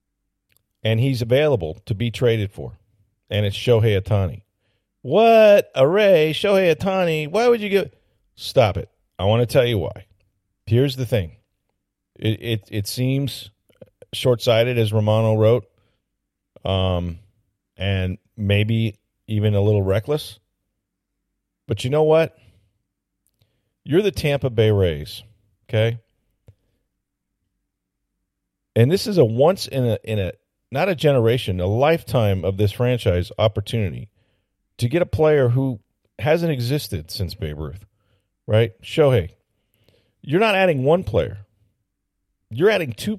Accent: American